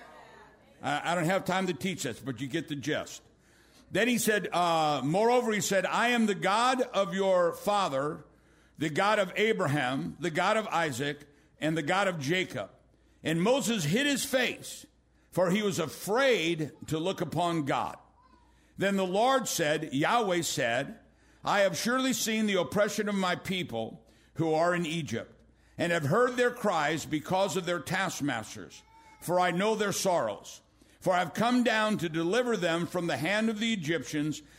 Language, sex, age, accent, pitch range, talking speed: English, male, 60-79, American, 160-215 Hz, 170 wpm